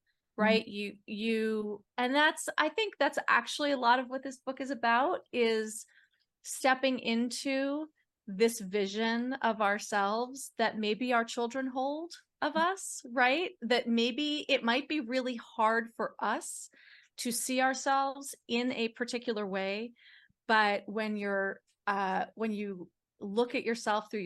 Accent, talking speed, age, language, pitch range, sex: American, 145 wpm, 30-49, English, 215-280 Hz, female